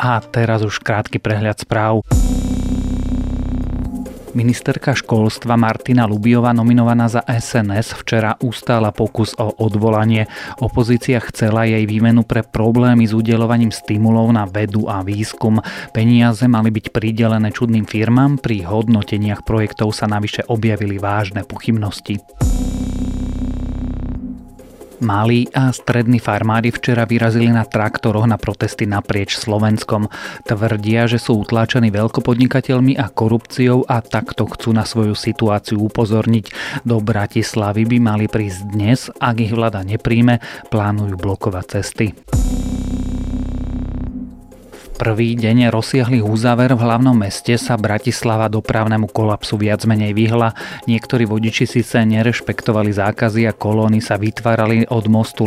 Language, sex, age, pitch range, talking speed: Slovak, male, 30-49, 105-120 Hz, 120 wpm